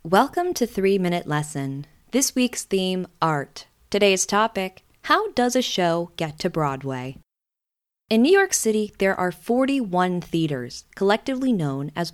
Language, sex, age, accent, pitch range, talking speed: English, female, 20-39, American, 155-225 Hz, 140 wpm